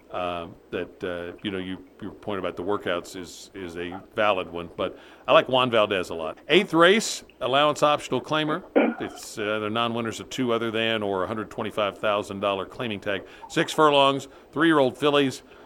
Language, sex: English, male